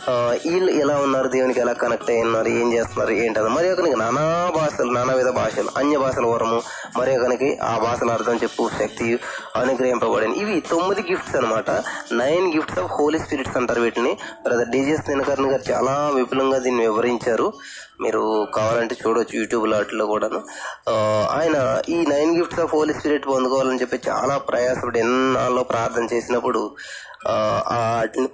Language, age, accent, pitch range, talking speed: Telugu, 20-39, native, 120-160 Hz, 140 wpm